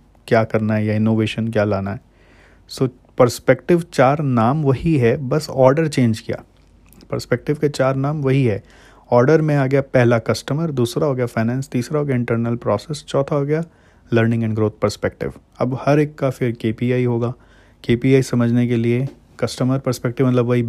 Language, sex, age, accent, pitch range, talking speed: English, male, 30-49, Indian, 115-130 Hz, 175 wpm